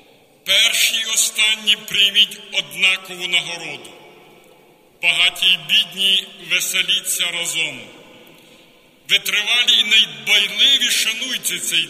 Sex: male